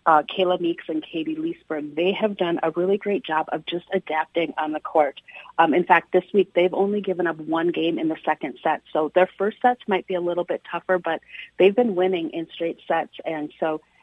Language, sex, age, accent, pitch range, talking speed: English, female, 40-59, American, 160-195 Hz, 225 wpm